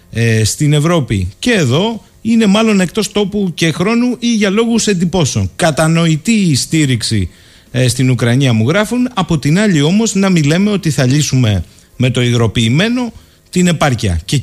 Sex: male